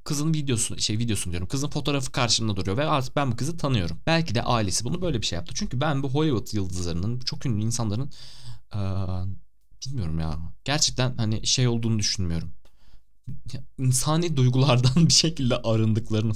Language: Turkish